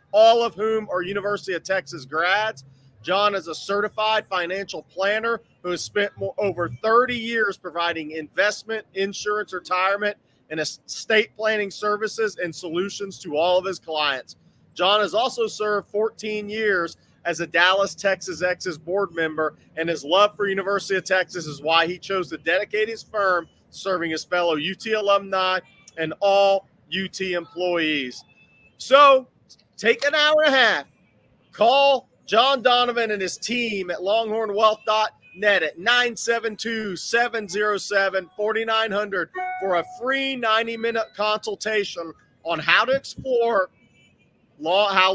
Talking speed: 135 wpm